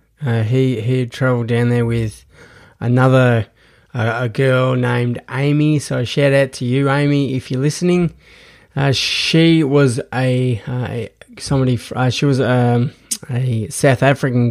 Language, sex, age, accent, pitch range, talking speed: English, male, 20-39, Australian, 120-140 Hz, 145 wpm